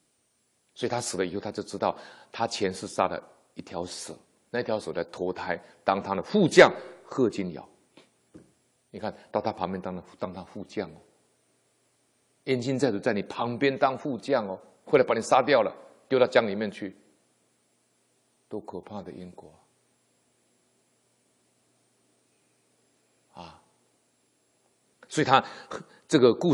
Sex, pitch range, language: male, 100-135 Hz, Chinese